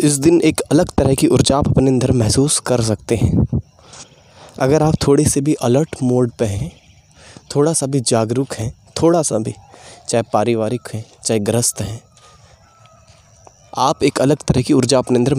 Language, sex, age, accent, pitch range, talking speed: Hindi, male, 20-39, native, 120-145 Hz, 175 wpm